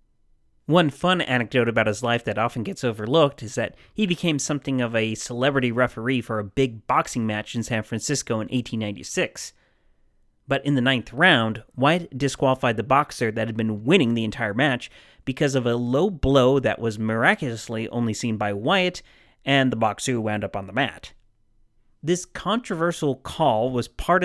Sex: male